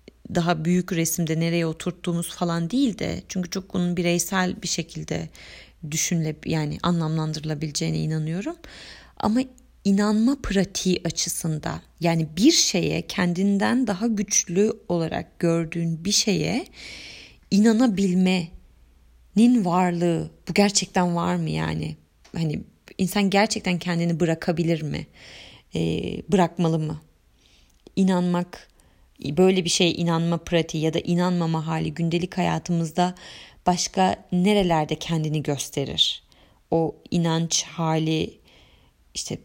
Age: 30-49